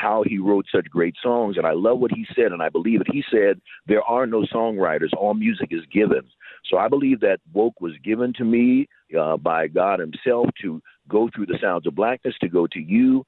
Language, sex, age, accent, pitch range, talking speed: English, male, 50-69, American, 105-135 Hz, 225 wpm